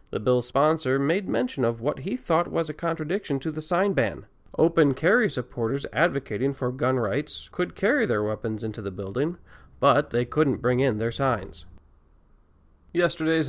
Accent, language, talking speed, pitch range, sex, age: American, English, 170 wpm, 130-170 Hz, male, 40-59